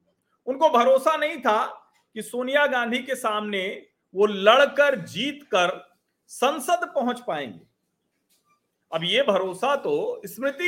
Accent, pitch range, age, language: native, 205-280 Hz, 40-59, Hindi